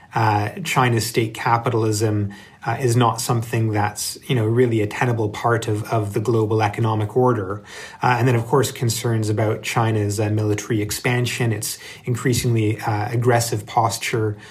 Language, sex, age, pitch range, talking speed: English, male, 30-49, 110-125 Hz, 155 wpm